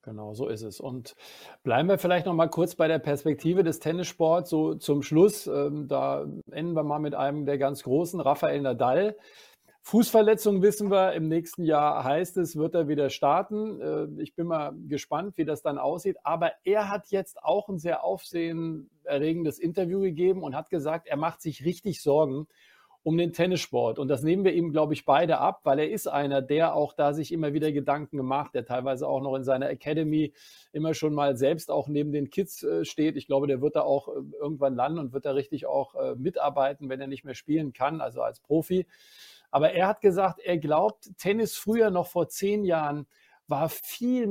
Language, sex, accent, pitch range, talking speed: German, male, German, 145-180 Hz, 200 wpm